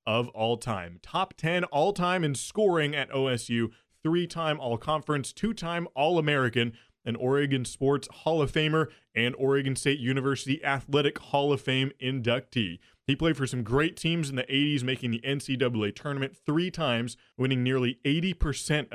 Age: 20-39